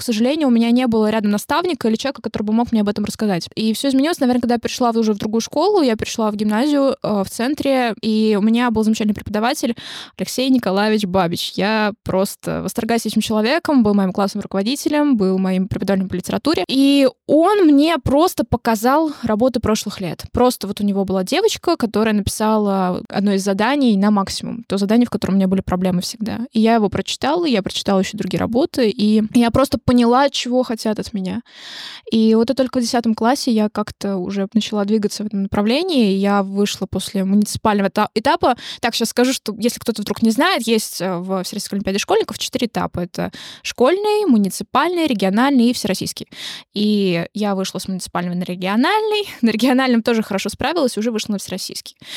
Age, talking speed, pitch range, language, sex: 20-39, 185 wpm, 200-255 Hz, Russian, female